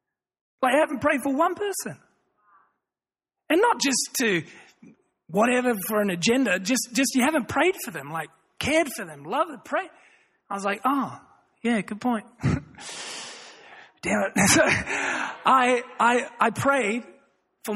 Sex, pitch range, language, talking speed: male, 195-265 Hz, English, 150 wpm